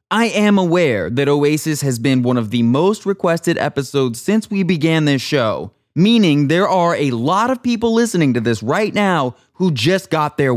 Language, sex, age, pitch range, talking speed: English, male, 20-39, 115-170 Hz, 195 wpm